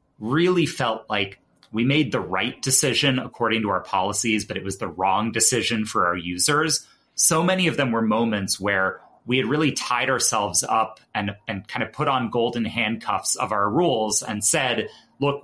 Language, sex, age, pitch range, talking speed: English, male, 30-49, 105-135 Hz, 185 wpm